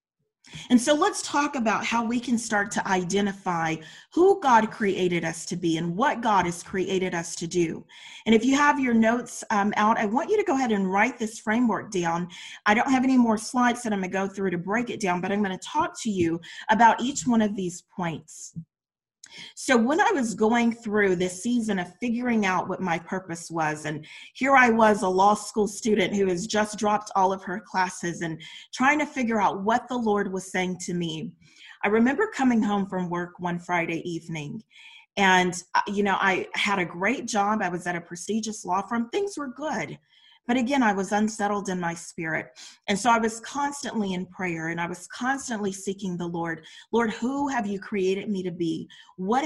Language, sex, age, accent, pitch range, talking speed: English, female, 40-59, American, 180-230 Hz, 210 wpm